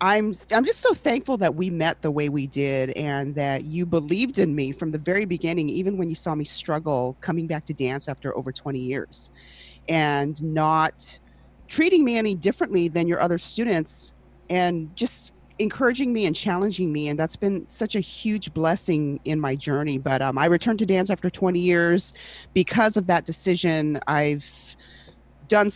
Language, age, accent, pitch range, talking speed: English, 40-59, American, 150-195 Hz, 180 wpm